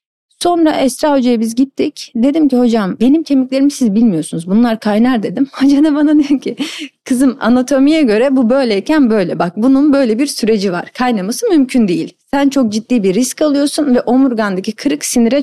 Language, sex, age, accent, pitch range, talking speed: Turkish, female, 40-59, native, 220-285 Hz, 170 wpm